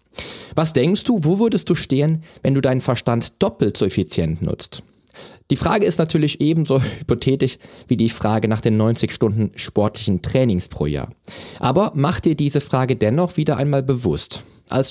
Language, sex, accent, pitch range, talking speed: German, male, German, 115-160 Hz, 170 wpm